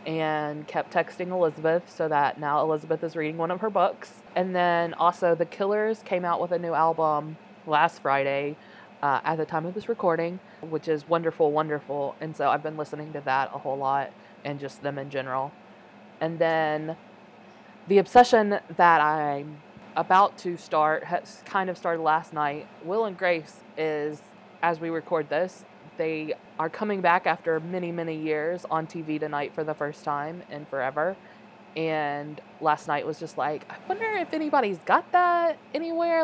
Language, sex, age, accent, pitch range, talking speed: English, female, 20-39, American, 155-190 Hz, 175 wpm